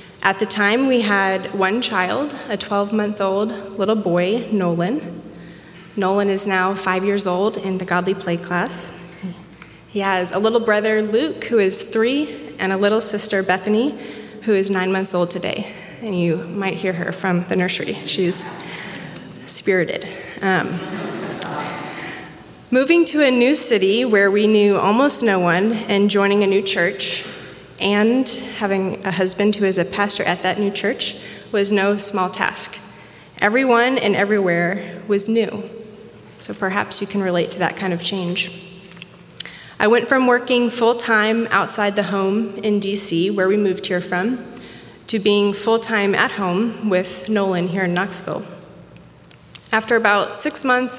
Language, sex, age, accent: English, female, 20-39, American